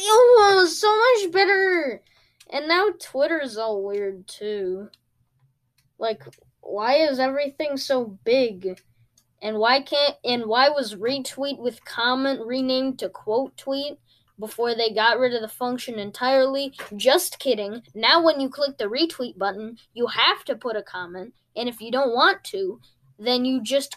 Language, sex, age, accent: English, female, 10-29, American